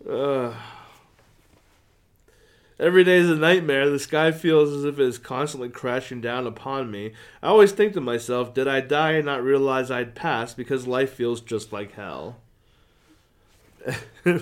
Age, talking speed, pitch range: 20-39, 160 wpm, 115-145 Hz